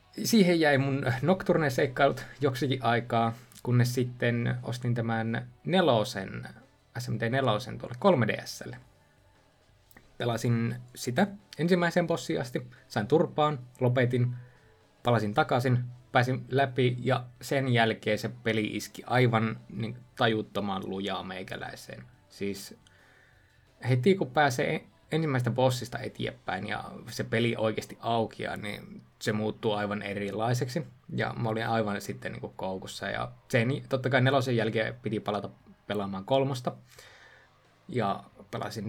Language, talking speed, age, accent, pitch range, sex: Finnish, 120 wpm, 20-39, native, 110-135 Hz, male